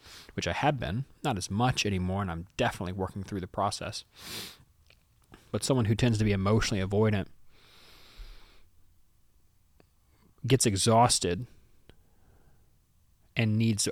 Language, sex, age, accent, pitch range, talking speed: English, male, 30-49, American, 100-115 Hz, 115 wpm